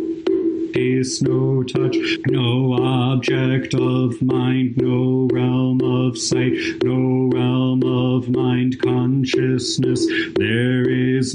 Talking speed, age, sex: 95 wpm, 40-59, male